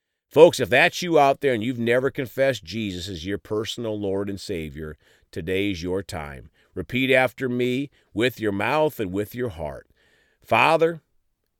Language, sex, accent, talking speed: English, male, American, 160 wpm